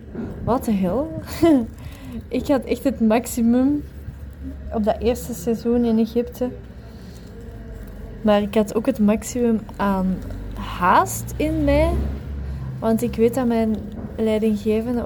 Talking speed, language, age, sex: 120 wpm, Dutch, 20-39, female